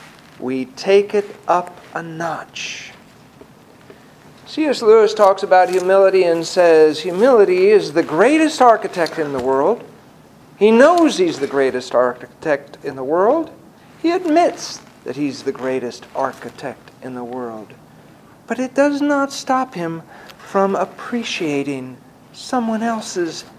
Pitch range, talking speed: 155-225 Hz, 125 wpm